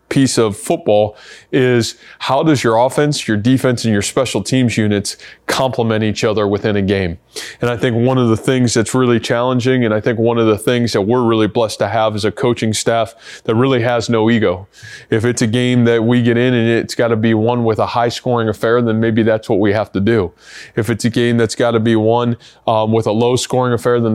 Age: 20-39